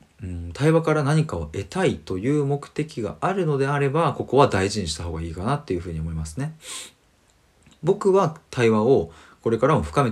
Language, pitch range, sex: Japanese, 85-135 Hz, male